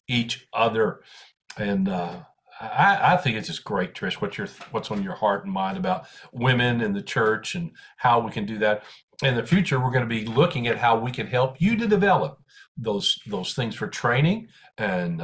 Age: 50-69